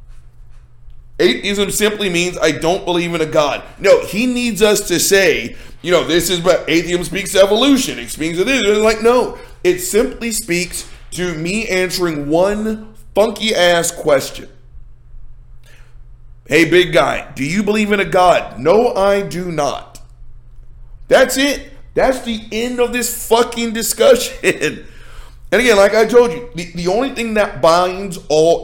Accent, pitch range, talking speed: American, 155-210 Hz, 160 wpm